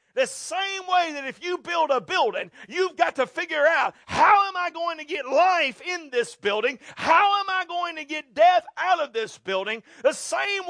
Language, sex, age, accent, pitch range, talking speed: English, male, 40-59, American, 210-345 Hz, 210 wpm